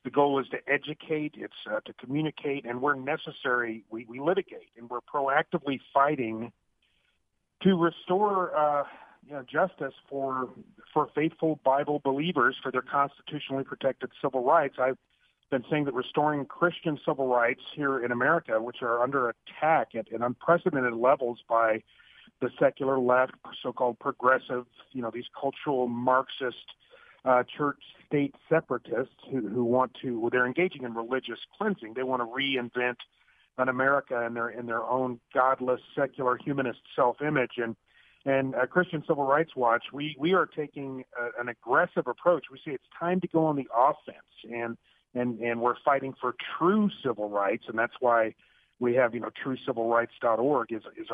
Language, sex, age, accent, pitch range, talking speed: English, male, 40-59, American, 120-145 Hz, 155 wpm